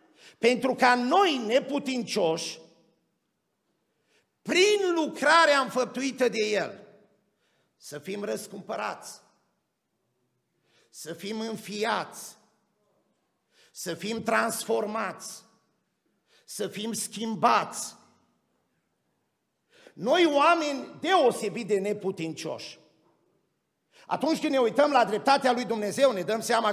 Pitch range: 215-295 Hz